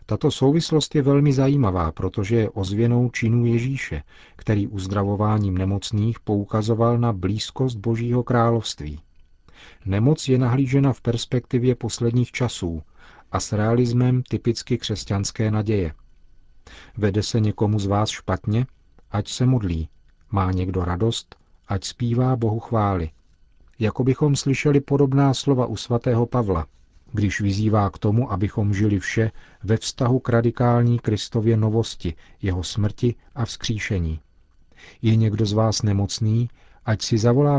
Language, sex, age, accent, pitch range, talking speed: Czech, male, 40-59, native, 100-120 Hz, 130 wpm